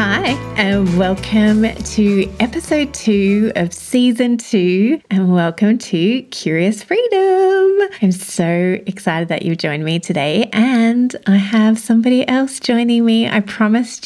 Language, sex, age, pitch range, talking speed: English, female, 30-49, 175-225 Hz, 130 wpm